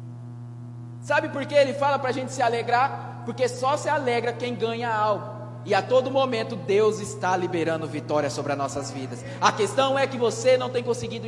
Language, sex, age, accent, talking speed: Portuguese, male, 20-39, Brazilian, 195 wpm